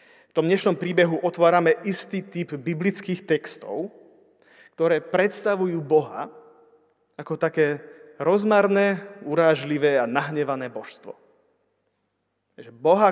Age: 30-49